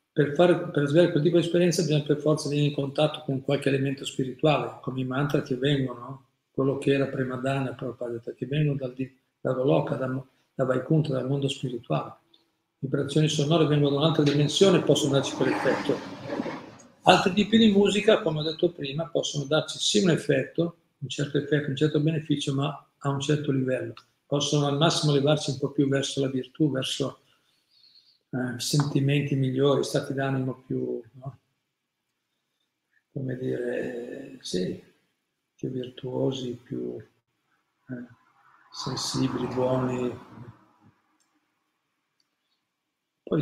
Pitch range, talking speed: 130-150 Hz, 135 wpm